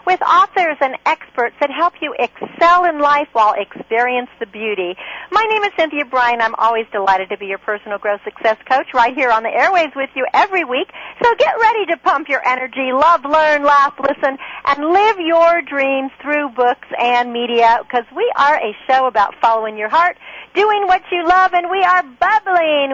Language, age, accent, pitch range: English, 40-59, American, 230-330 Hz